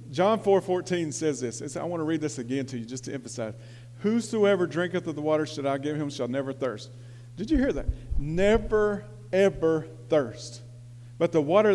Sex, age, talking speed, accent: male, 50-69, 200 wpm, American